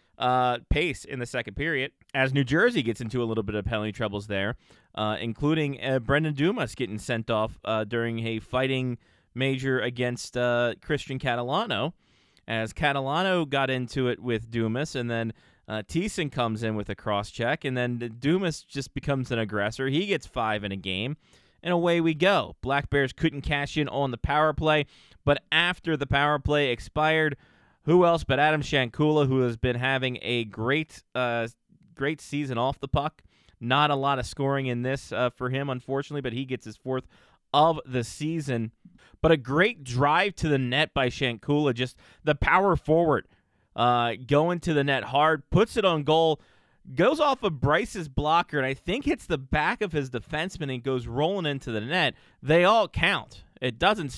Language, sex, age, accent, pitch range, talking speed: English, male, 20-39, American, 120-155 Hz, 185 wpm